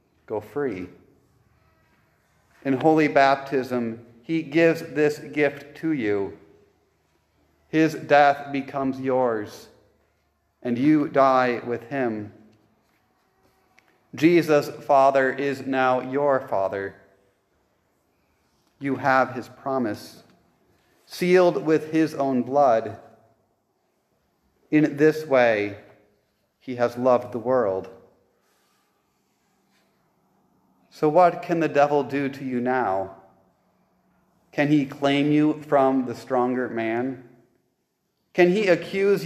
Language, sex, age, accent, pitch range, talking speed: English, male, 40-59, American, 115-145 Hz, 95 wpm